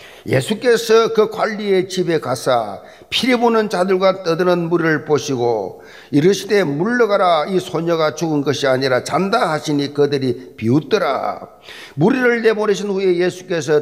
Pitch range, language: 145-220 Hz, Korean